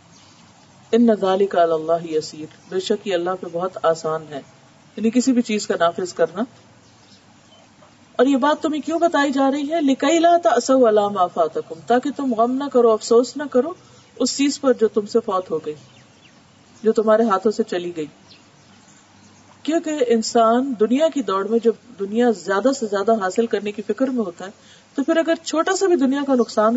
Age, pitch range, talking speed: 40-59, 185-260 Hz, 175 wpm